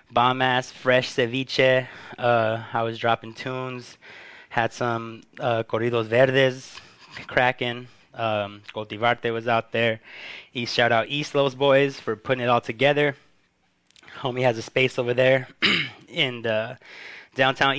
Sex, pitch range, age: male, 115-130 Hz, 20-39